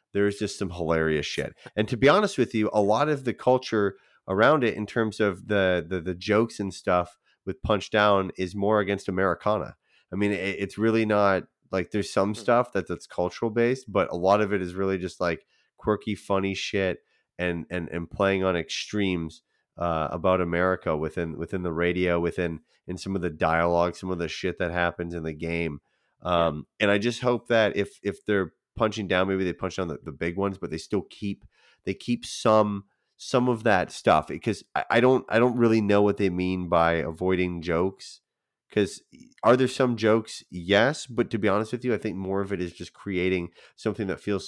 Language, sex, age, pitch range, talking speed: English, male, 30-49, 90-105 Hz, 210 wpm